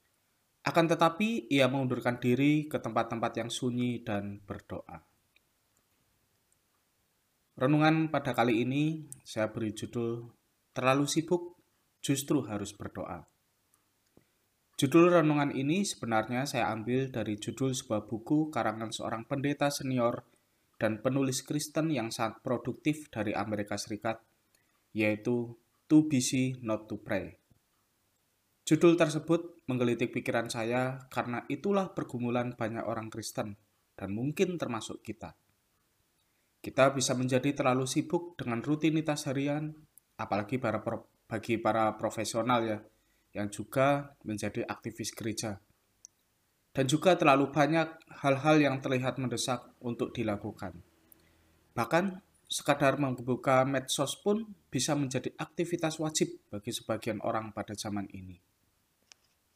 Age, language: 20-39, Indonesian